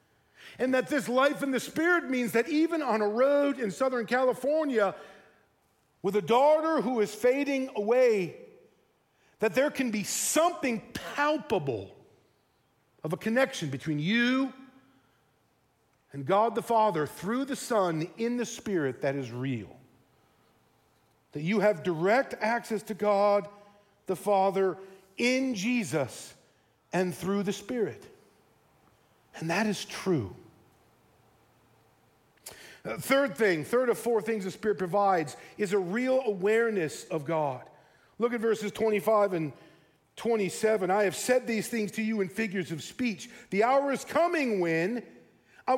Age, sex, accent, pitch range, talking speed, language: 50-69, male, American, 190-255 Hz, 140 wpm, English